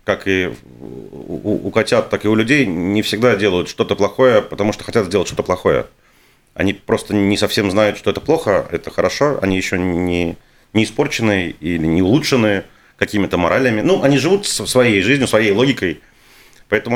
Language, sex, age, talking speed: Russian, male, 30-49, 165 wpm